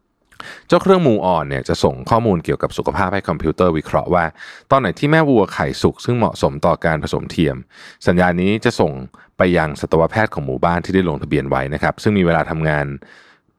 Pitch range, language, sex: 80-115 Hz, Thai, male